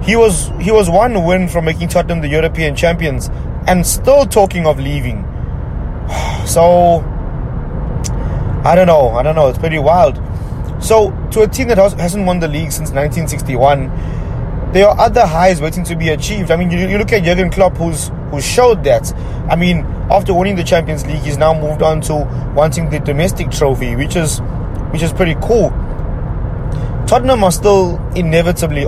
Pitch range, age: 140-185 Hz, 20-39